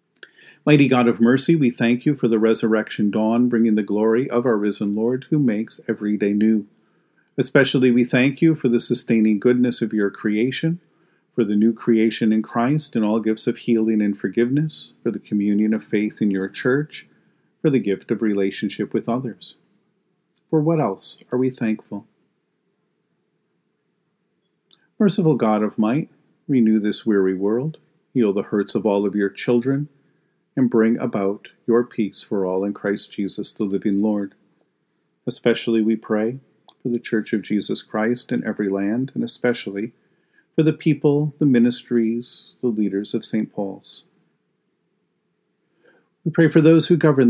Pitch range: 110-130 Hz